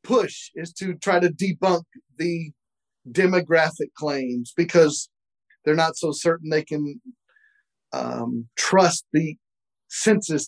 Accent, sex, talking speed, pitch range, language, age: American, male, 115 wpm, 150-185 Hz, English, 40-59